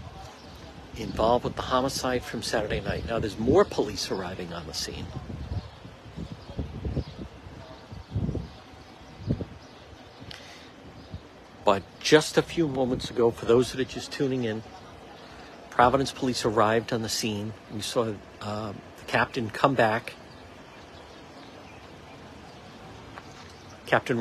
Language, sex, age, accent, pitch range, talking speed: English, male, 60-79, American, 100-125 Hz, 105 wpm